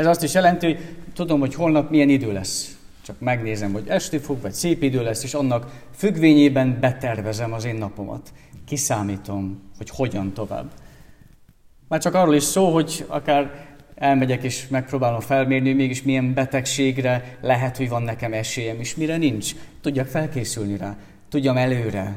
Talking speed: 155 wpm